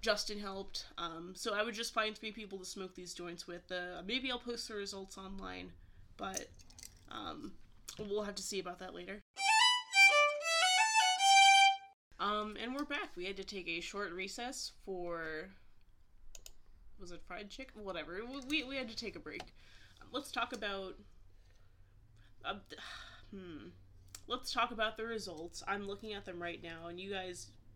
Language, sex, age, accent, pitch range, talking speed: English, female, 20-39, American, 175-230 Hz, 160 wpm